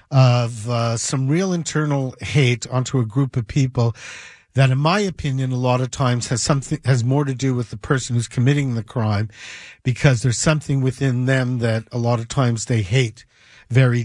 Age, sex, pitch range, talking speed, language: 50-69, male, 120-145 Hz, 190 wpm, English